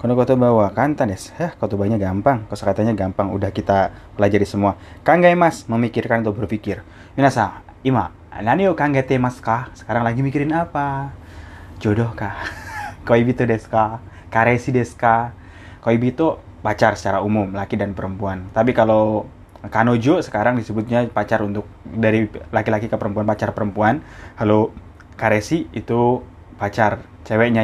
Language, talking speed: Indonesian, 125 wpm